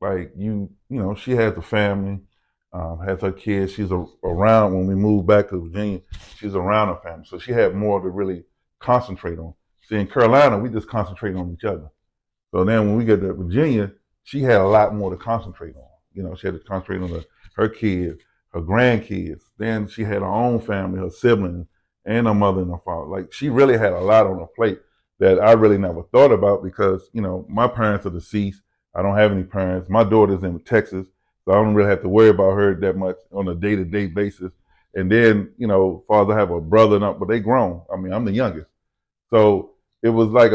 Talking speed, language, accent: 225 wpm, English, American